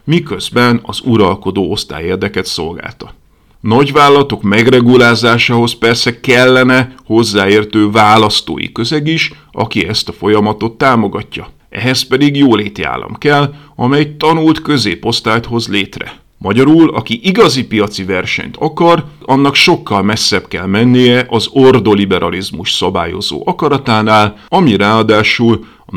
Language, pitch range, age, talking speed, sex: Hungarian, 110-155 Hz, 50-69, 110 wpm, male